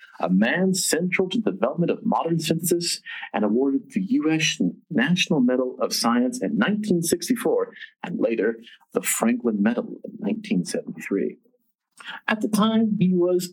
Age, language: 40-59, English